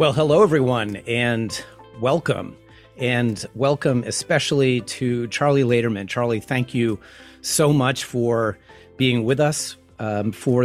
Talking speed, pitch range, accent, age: 125 wpm, 110-140 Hz, American, 40-59